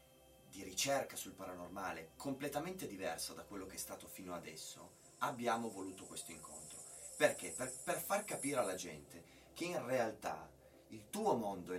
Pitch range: 85-120 Hz